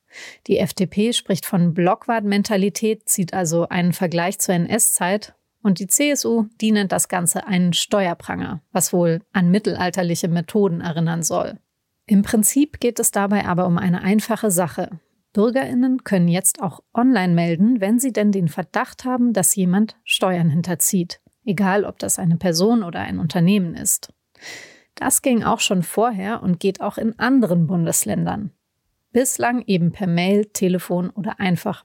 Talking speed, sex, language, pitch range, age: 150 wpm, female, German, 180-220 Hz, 30-49